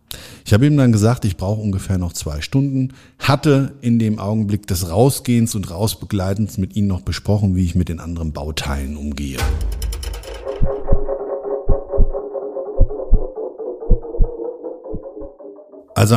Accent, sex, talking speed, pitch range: German, male, 115 wpm, 95-120 Hz